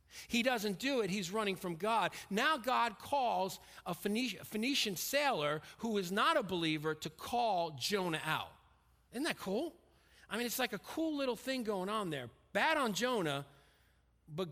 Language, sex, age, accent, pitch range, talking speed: English, male, 40-59, American, 155-220 Hz, 170 wpm